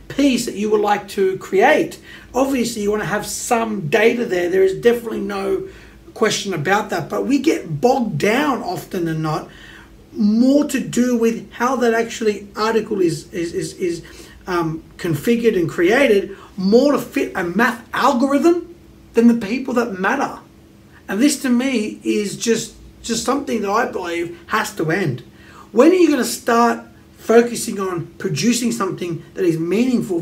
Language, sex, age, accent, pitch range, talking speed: English, male, 30-49, Australian, 190-235 Hz, 165 wpm